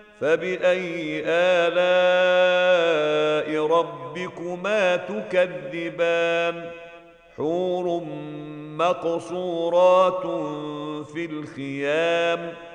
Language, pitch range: Arabic, 165-180 Hz